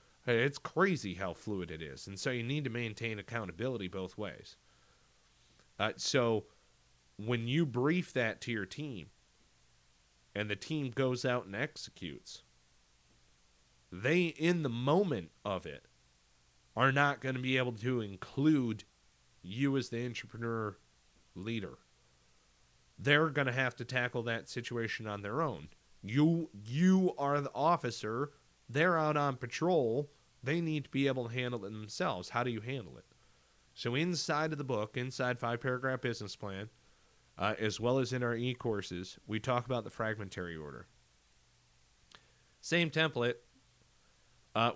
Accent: American